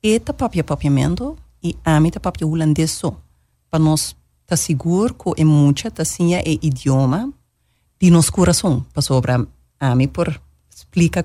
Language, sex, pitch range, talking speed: Dutch, female, 130-175 Hz, 130 wpm